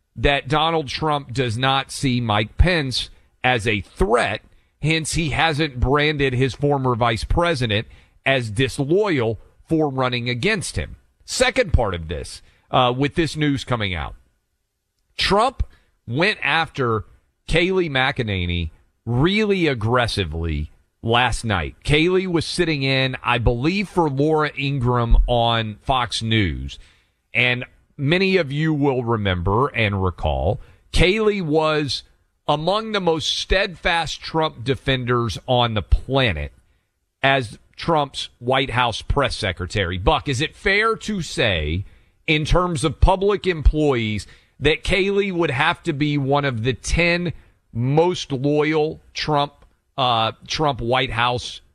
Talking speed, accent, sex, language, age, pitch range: 125 wpm, American, male, English, 40-59, 110-155 Hz